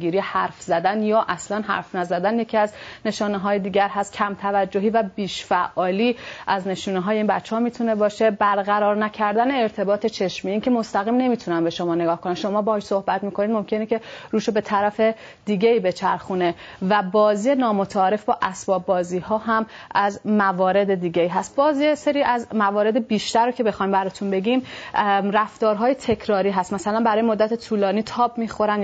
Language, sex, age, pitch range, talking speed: Persian, female, 30-49, 195-225 Hz, 160 wpm